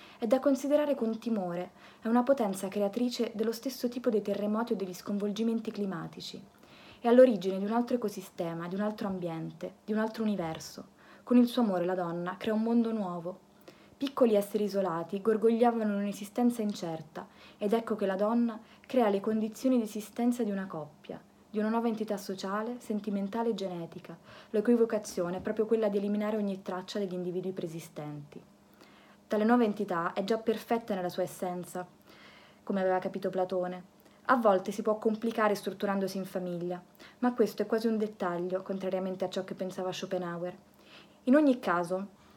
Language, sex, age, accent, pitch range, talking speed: English, female, 20-39, Italian, 185-225 Hz, 165 wpm